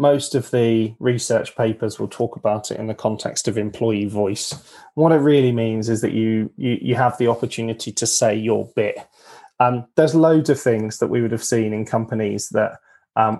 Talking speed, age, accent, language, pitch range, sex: 200 wpm, 20-39, British, English, 110-125 Hz, male